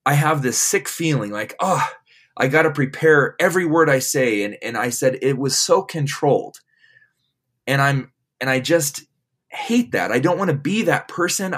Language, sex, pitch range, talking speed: English, male, 135-160 Hz, 180 wpm